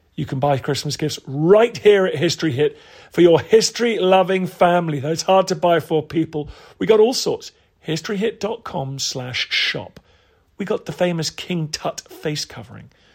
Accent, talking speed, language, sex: British, 150 wpm, English, male